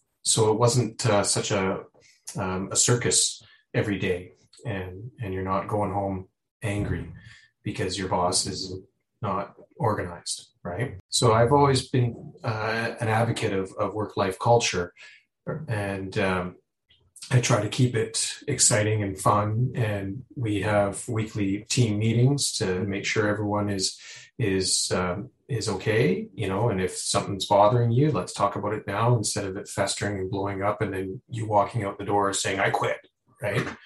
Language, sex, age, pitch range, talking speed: English, male, 30-49, 100-120 Hz, 160 wpm